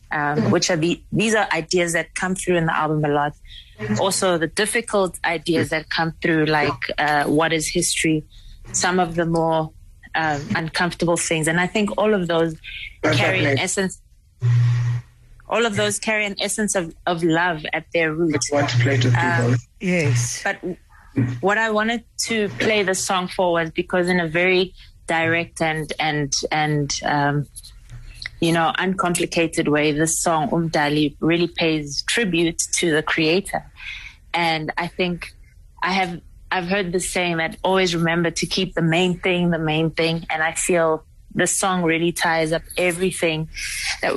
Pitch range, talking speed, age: 155-180 Hz, 160 wpm, 30-49